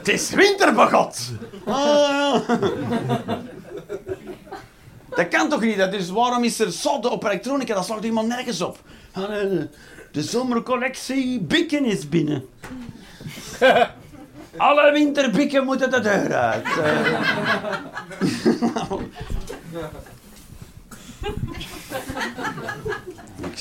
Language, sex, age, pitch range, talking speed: Dutch, male, 50-69, 155-245 Hz, 90 wpm